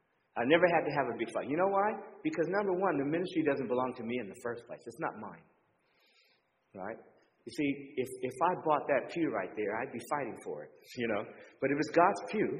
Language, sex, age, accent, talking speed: English, male, 40-59, American, 240 wpm